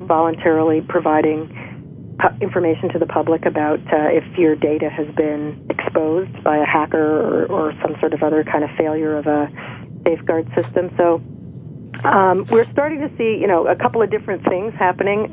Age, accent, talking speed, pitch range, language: 40-59, American, 170 wpm, 155-180 Hz, English